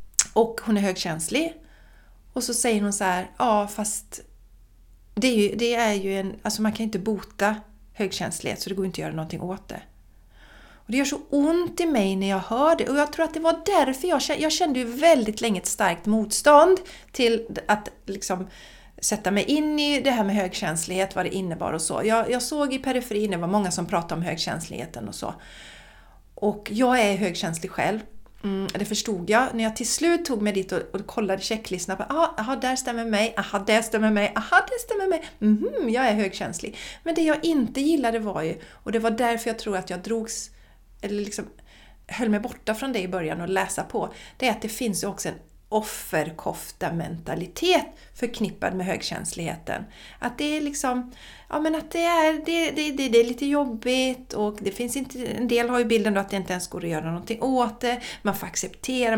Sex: female